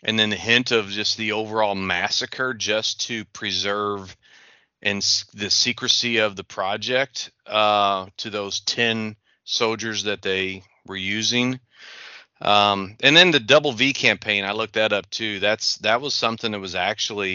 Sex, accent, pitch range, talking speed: male, American, 95-110 Hz, 160 wpm